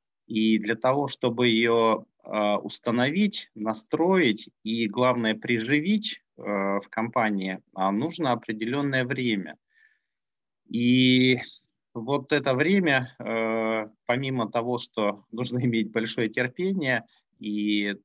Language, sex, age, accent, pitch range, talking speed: Russian, male, 20-39, native, 110-130 Hz, 90 wpm